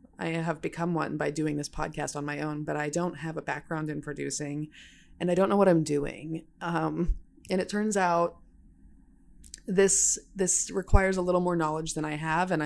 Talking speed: 200 wpm